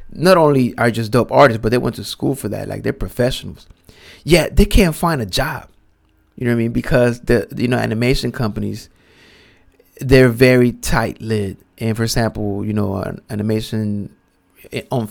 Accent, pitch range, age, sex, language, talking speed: American, 105-145 Hz, 20-39, male, English, 180 wpm